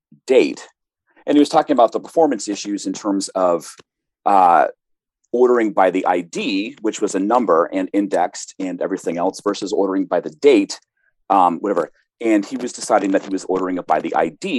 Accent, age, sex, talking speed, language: American, 40-59, male, 185 wpm, English